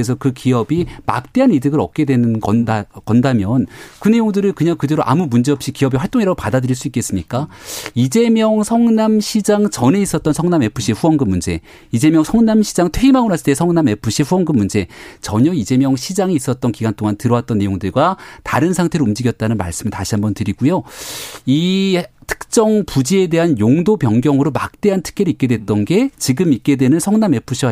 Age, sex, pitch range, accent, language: 40-59, male, 120-195 Hz, native, Korean